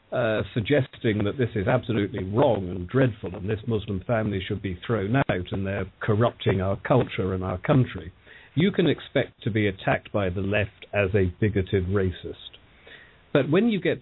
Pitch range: 95-125 Hz